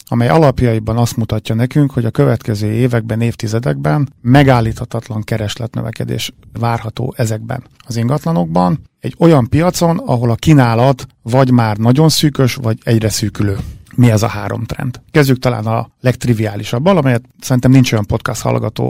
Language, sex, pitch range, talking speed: Hungarian, male, 115-135 Hz, 140 wpm